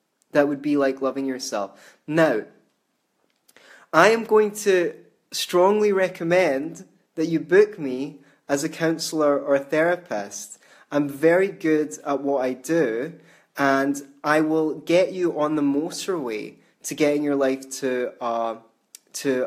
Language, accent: English, British